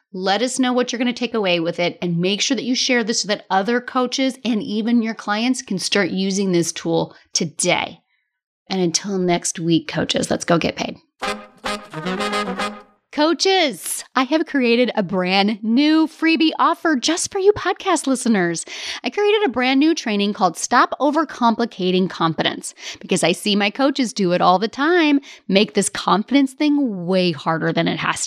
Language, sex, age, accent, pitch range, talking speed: English, female, 30-49, American, 190-280 Hz, 175 wpm